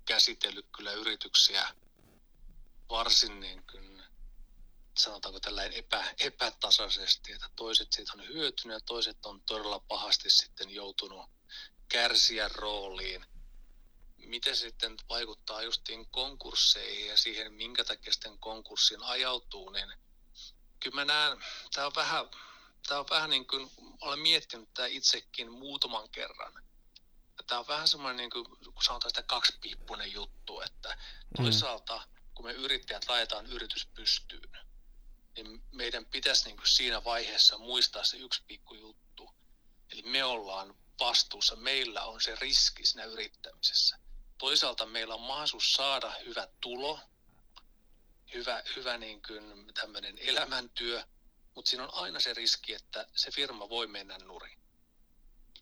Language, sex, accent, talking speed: Finnish, male, native, 120 wpm